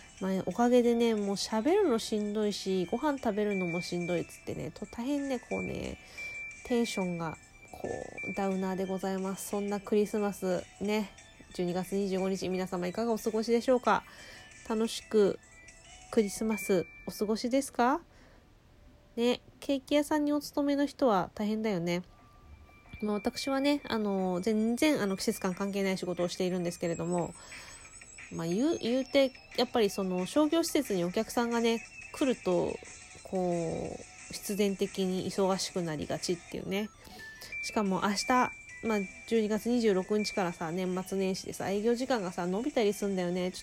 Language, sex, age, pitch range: Japanese, female, 20-39, 185-240 Hz